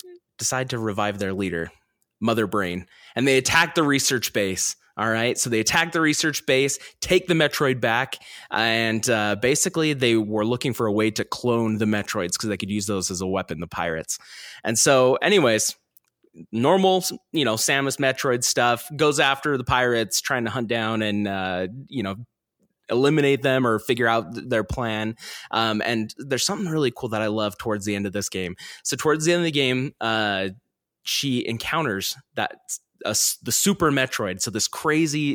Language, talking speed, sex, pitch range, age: English, 185 wpm, male, 105-135 Hz, 20-39